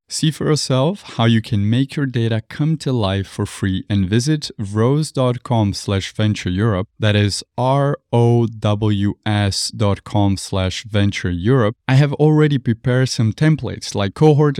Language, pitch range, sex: English, 105-130 Hz, male